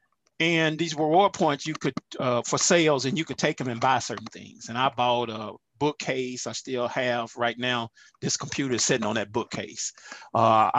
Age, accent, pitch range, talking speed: 40-59, American, 125-170 Hz, 205 wpm